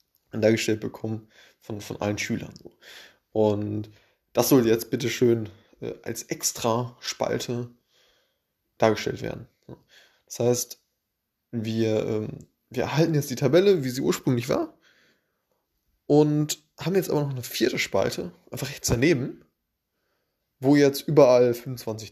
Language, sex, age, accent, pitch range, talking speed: German, male, 20-39, German, 115-140 Hz, 120 wpm